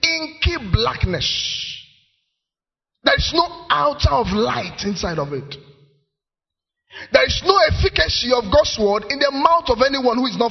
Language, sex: English, male